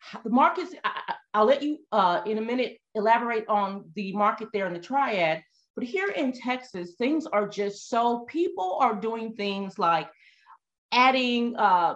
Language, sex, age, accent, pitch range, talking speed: English, female, 40-59, American, 195-255 Hz, 165 wpm